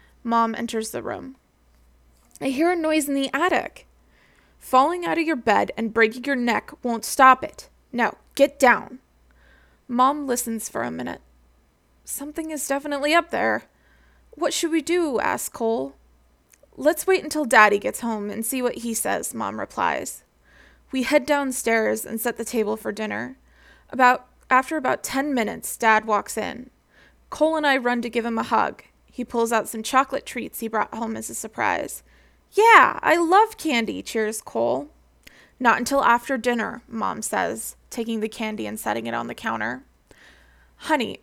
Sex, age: female, 20-39